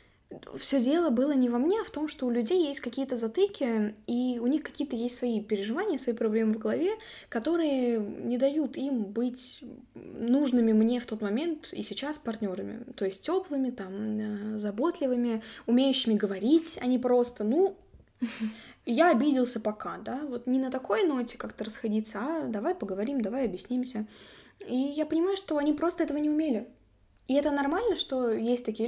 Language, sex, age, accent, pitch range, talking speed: Russian, female, 10-29, native, 220-280 Hz, 165 wpm